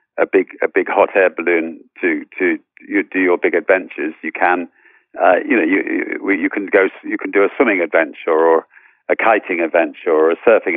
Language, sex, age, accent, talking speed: English, male, 50-69, British, 205 wpm